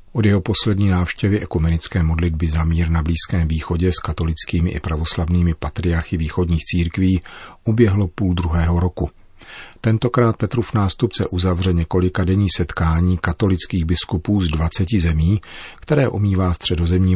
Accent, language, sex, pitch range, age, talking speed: native, Czech, male, 85-95 Hz, 40-59, 135 wpm